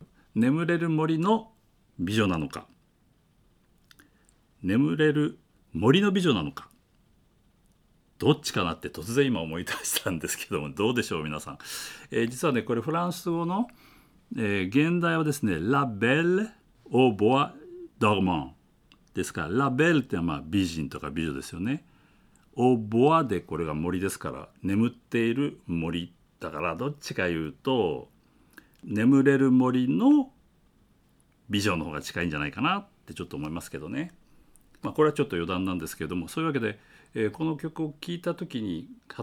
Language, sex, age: Japanese, male, 60-79